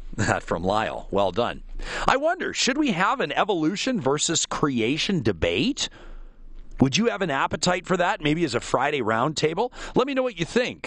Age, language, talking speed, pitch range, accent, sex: 40-59, English, 180 wpm, 135-200 Hz, American, male